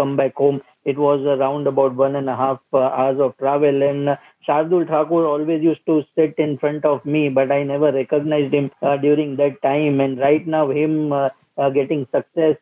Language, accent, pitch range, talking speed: English, Indian, 140-160 Hz, 210 wpm